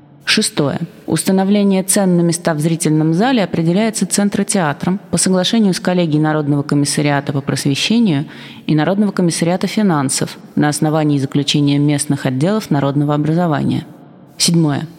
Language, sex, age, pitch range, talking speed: Russian, female, 20-39, 150-190 Hz, 120 wpm